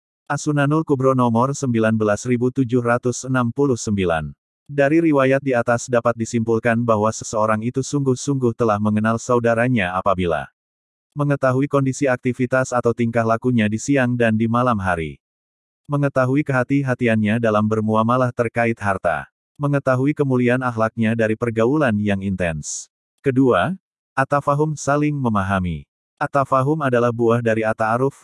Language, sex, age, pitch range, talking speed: Indonesian, male, 30-49, 110-130 Hz, 110 wpm